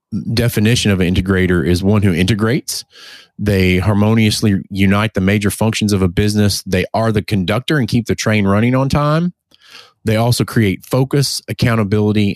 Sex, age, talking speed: male, 30-49, 160 wpm